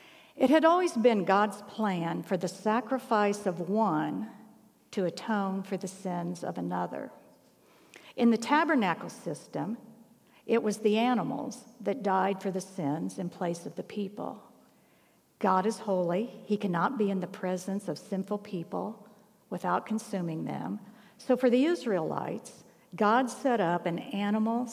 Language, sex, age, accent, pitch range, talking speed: English, female, 60-79, American, 190-230 Hz, 145 wpm